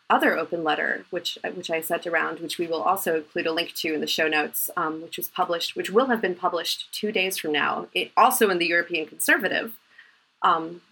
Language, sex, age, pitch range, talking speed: English, female, 30-49, 170-220 Hz, 215 wpm